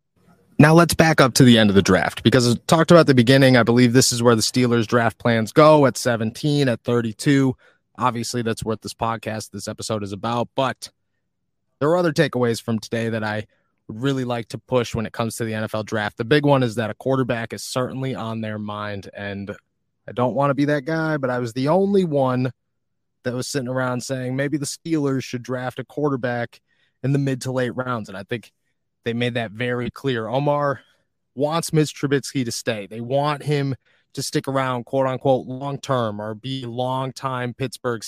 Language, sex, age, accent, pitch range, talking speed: English, male, 30-49, American, 115-140 Hz, 205 wpm